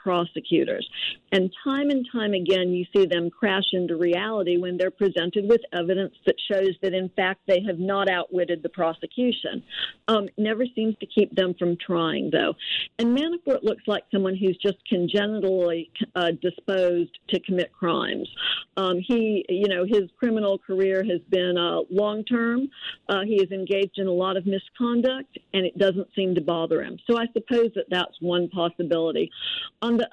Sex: female